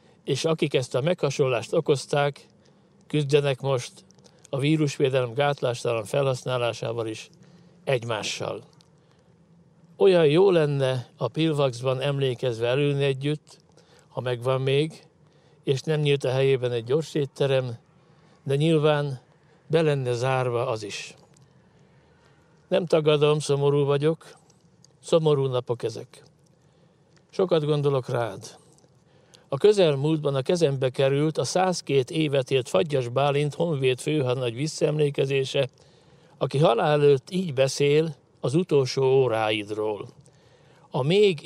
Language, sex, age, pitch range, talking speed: Hungarian, male, 60-79, 130-160 Hz, 105 wpm